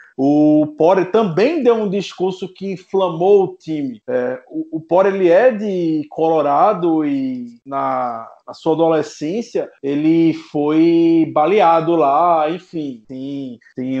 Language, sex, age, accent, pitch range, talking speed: Portuguese, male, 20-39, Brazilian, 140-170 Hz, 130 wpm